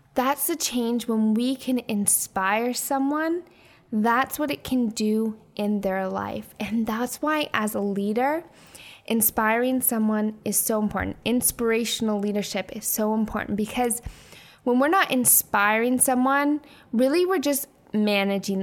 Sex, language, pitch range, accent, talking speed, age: female, English, 210-260 Hz, American, 135 wpm, 10-29